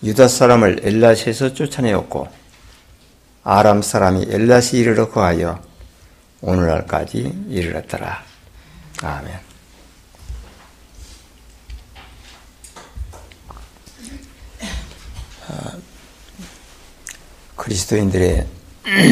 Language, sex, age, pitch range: Korean, male, 60-79, 85-115 Hz